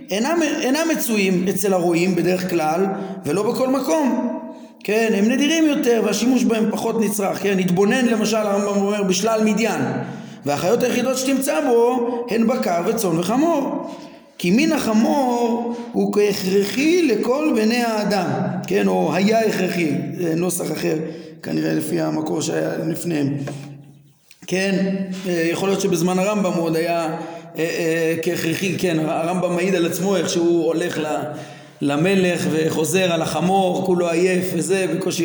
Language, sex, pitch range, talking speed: Hebrew, male, 160-220 Hz, 130 wpm